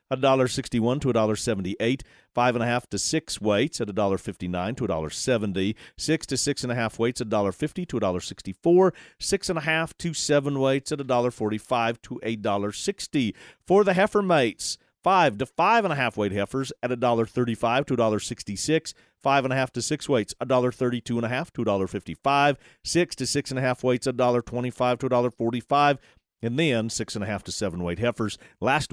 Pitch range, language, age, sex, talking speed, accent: 110-145 Hz, English, 40-59, male, 250 wpm, American